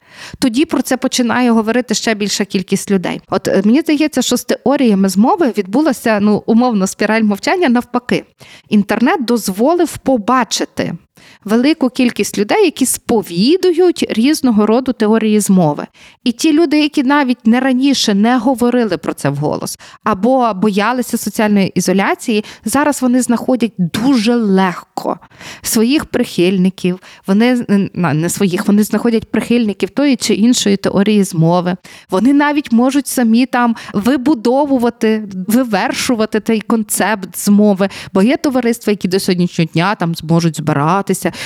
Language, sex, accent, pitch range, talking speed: Ukrainian, female, native, 190-255 Hz, 125 wpm